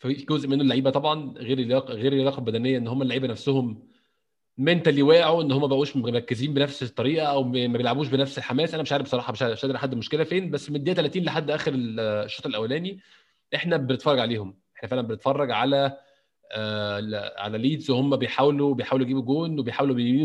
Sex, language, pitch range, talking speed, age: male, Arabic, 125-155 Hz, 180 wpm, 20-39